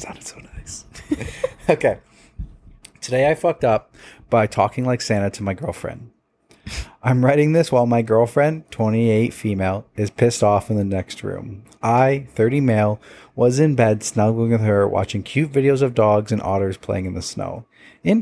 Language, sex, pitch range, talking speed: English, male, 105-125 Hz, 170 wpm